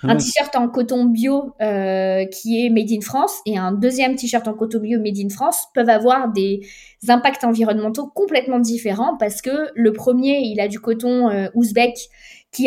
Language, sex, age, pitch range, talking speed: French, female, 20-39, 200-250 Hz, 185 wpm